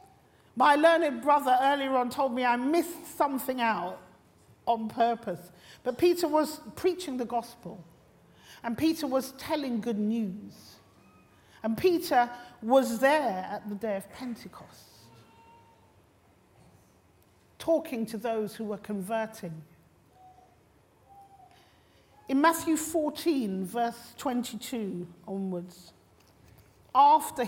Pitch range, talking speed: 195-275 Hz, 105 wpm